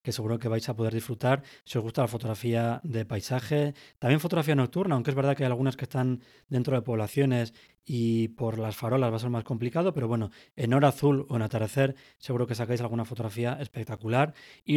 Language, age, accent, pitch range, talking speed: Spanish, 20-39, Spanish, 115-135 Hz, 210 wpm